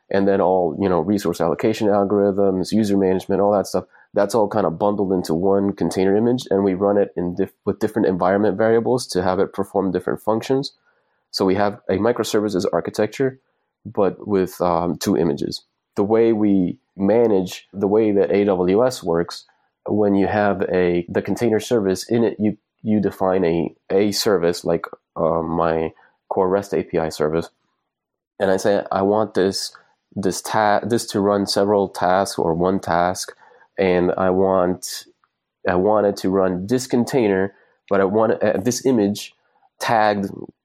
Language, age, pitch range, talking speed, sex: English, 30-49, 90-105 Hz, 165 wpm, male